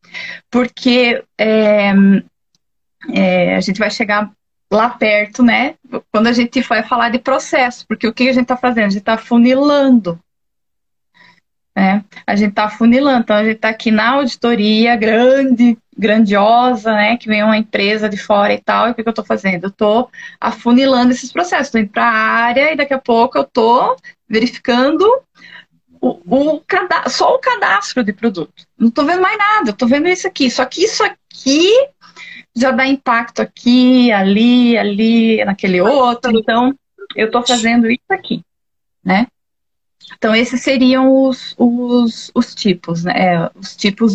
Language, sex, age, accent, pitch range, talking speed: Portuguese, female, 20-39, Brazilian, 210-265 Hz, 165 wpm